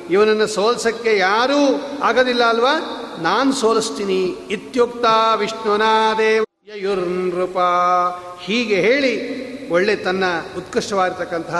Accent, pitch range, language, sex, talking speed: native, 185-225 Hz, Kannada, male, 70 wpm